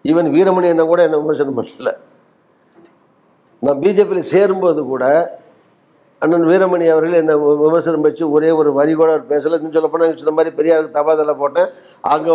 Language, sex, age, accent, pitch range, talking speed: Tamil, male, 60-79, native, 155-190 Hz, 145 wpm